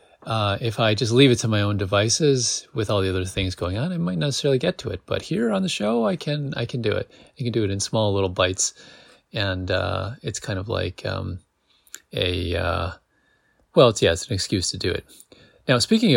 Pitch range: 100-130 Hz